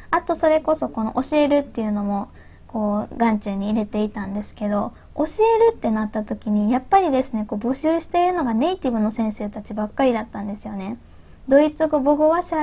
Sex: female